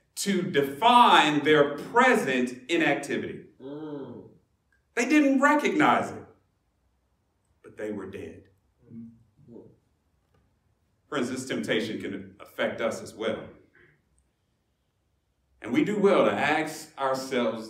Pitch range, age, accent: 90-150 Hz, 40-59, American